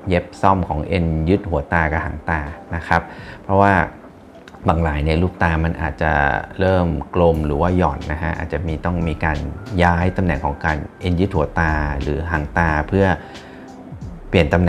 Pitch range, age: 80-90 Hz, 30-49